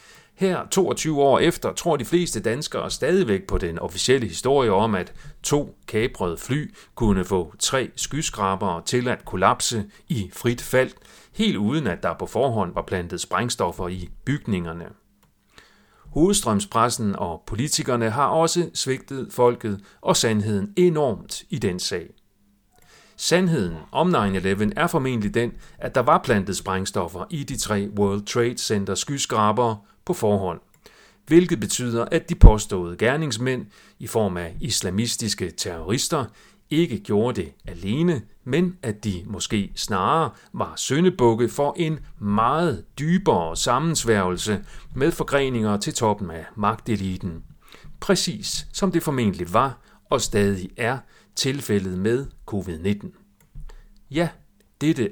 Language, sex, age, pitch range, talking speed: Danish, male, 40-59, 100-150 Hz, 130 wpm